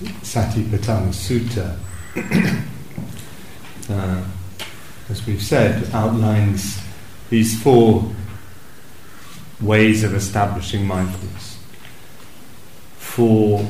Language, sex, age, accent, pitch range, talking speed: English, male, 40-59, British, 100-115 Hz, 60 wpm